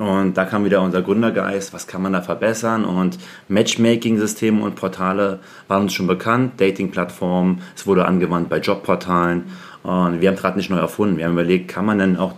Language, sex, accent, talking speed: German, male, German, 190 wpm